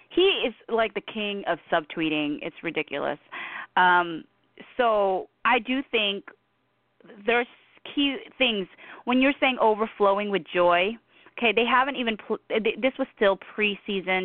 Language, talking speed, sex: English, 130 wpm, female